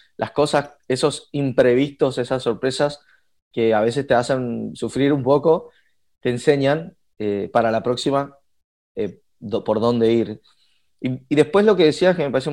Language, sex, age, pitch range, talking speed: Spanish, male, 20-39, 110-145 Hz, 165 wpm